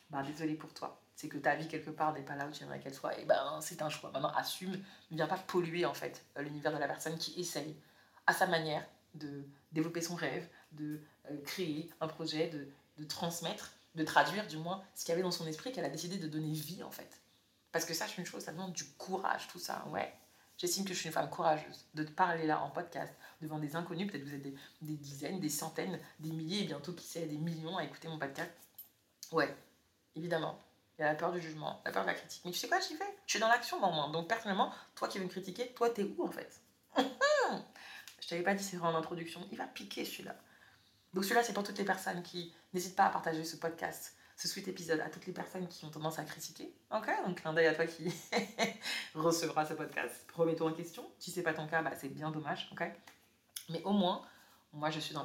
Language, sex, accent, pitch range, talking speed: French, female, French, 155-180 Hz, 250 wpm